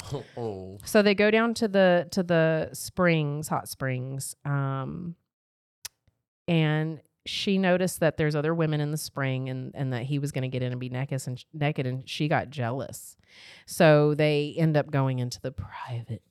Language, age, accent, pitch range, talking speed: English, 30-49, American, 125-160 Hz, 175 wpm